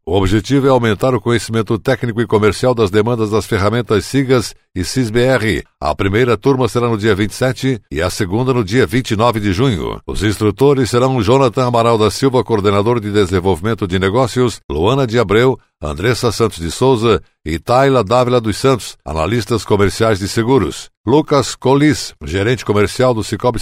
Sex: male